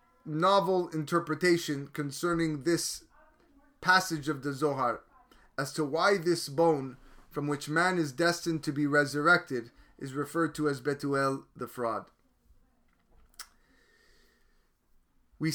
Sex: male